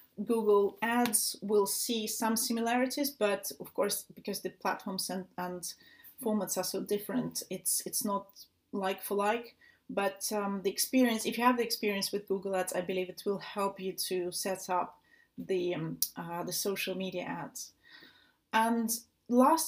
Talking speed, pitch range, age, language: 165 wpm, 200-240 Hz, 30-49, English